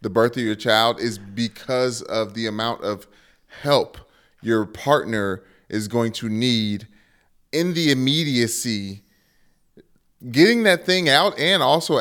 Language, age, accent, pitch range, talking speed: English, 30-49, American, 105-130 Hz, 135 wpm